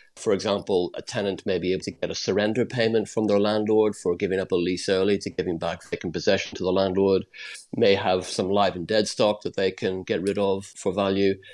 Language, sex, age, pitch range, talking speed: English, male, 40-59, 95-110 Hz, 230 wpm